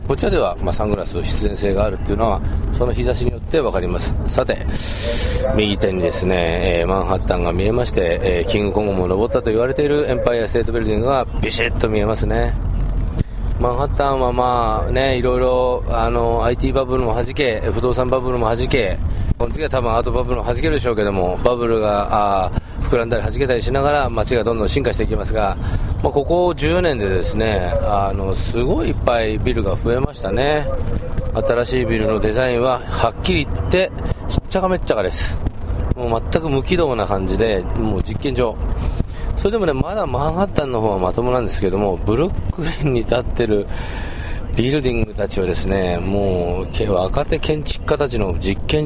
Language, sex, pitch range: Japanese, male, 95-120 Hz